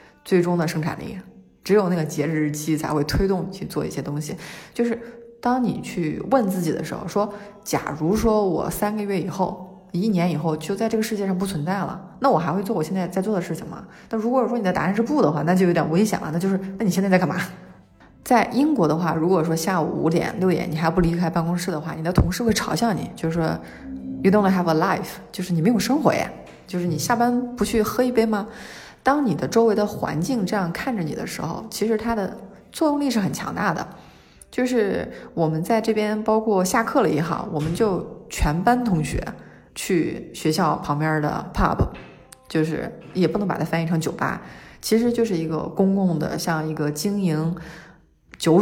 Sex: female